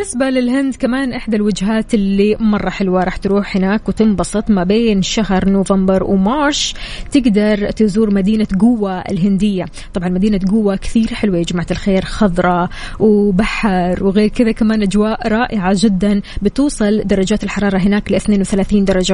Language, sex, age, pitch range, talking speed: Arabic, female, 20-39, 195-225 Hz, 140 wpm